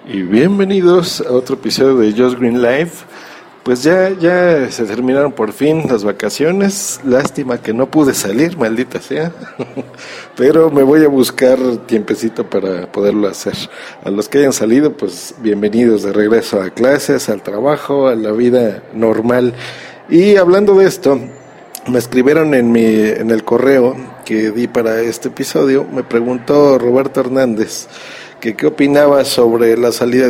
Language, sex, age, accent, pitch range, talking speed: Spanish, male, 50-69, Mexican, 115-145 Hz, 155 wpm